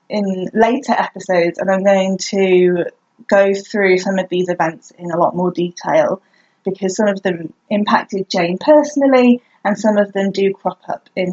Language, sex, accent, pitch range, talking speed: English, female, British, 190-245 Hz, 175 wpm